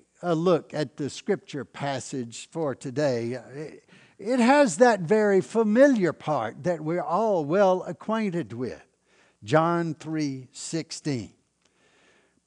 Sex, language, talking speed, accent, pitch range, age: male, English, 105 wpm, American, 140-220 Hz, 60-79